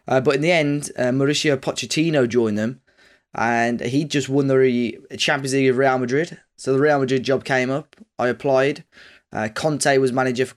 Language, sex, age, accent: English, male, 10-29, British